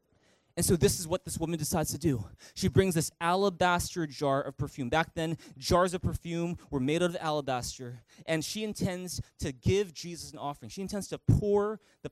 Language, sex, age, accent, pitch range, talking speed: English, male, 20-39, American, 145-195 Hz, 200 wpm